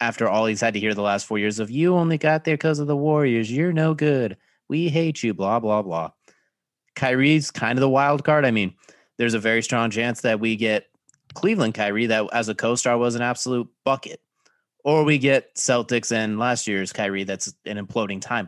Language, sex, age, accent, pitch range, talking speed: English, male, 30-49, American, 100-130 Hz, 215 wpm